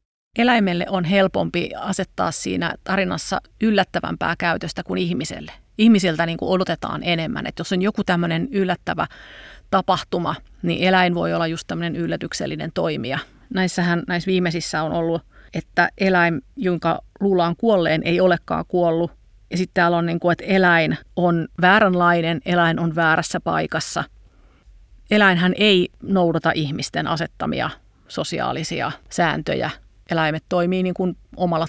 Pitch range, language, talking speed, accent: 165-185 Hz, Finnish, 130 wpm, native